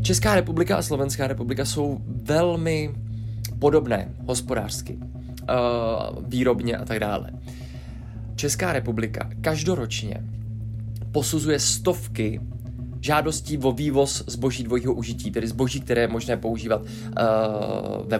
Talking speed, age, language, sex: 100 wpm, 20-39, Czech, male